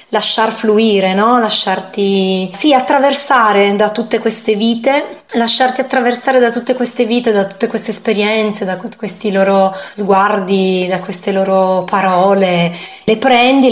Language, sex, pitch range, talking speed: Italian, female, 205-245 Hz, 130 wpm